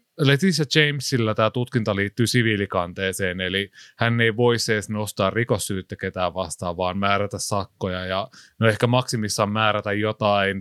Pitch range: 100-130 Hz